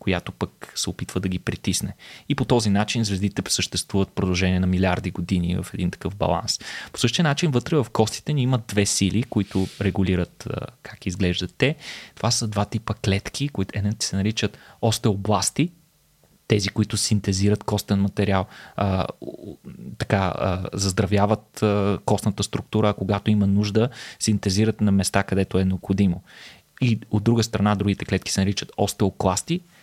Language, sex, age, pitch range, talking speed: Bulgarian, male, 20-39, 95-120 Hz, 150 wpm